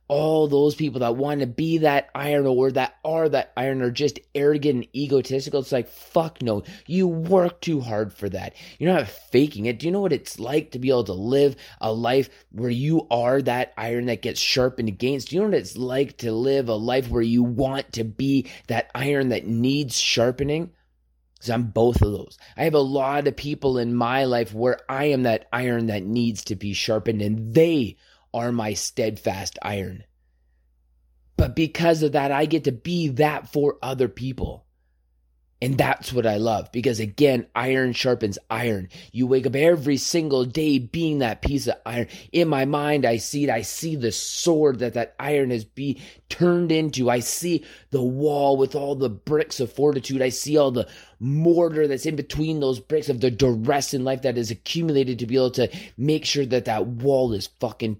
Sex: male